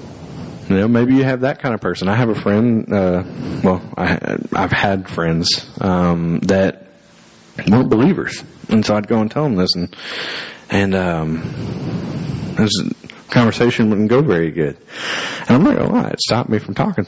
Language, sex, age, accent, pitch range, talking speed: English, male, 40-59, American, 90-110 Hz, 175 wpm